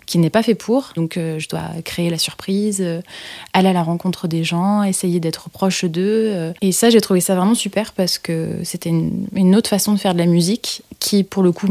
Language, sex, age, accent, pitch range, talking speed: French, female, 20-39, French, 170-200 Hz, 220 wpm